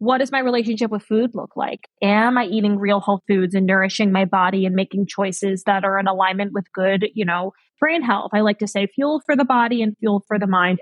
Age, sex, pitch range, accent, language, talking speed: 20-39, female, 195-235 Hz, American, English, 245 wpm